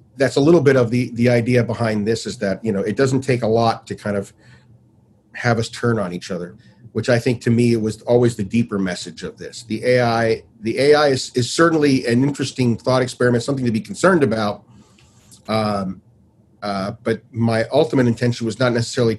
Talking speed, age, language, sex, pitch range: 205 wpm, 40-59, English, male, 110-125 Hz